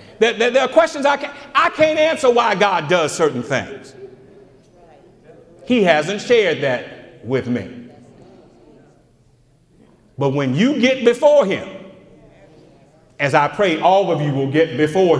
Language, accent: English, American